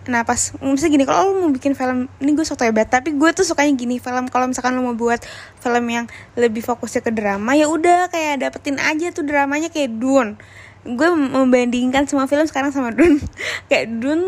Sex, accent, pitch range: female, native, 240-300 Hz